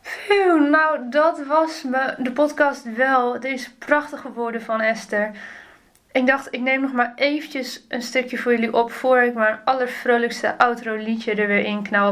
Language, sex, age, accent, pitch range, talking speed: Dutch, female, 20-39, Dutch, 215-260 Hz, 175 wpm